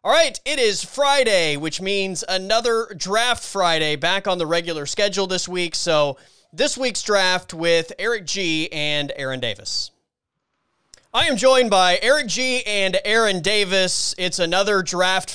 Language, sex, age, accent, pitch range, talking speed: English, male, 20-39, American, 145-185 Hz, 155 wpm